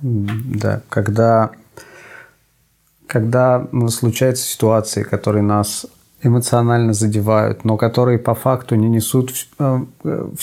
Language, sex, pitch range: Russian, male, 95-115 Hz